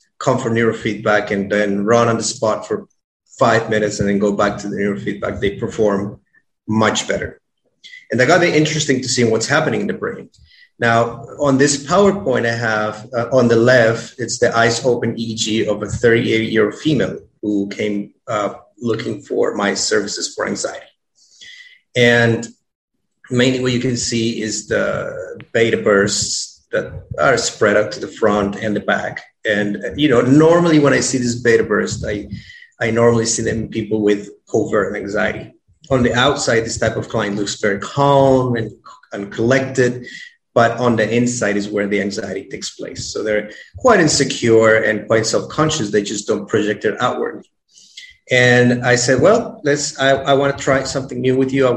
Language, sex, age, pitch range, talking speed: English, male, 30-49, 110-135 Hz, 175 wpm